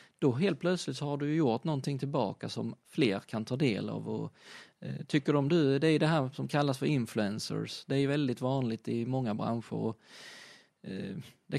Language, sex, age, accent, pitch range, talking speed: Swedish, male, 20-39, native, 120-145 Hz, 200 wpm